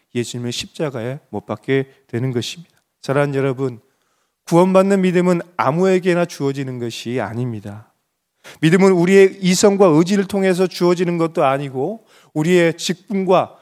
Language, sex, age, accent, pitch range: Korean, male, 30-49, native, 135-190 Hz